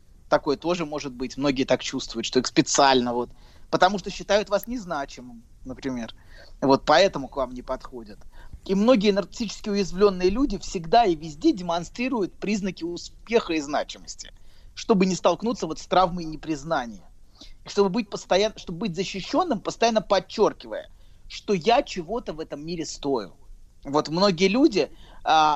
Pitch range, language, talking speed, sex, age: 135-195 Hz, Russian, 145 wpm, male, 30-49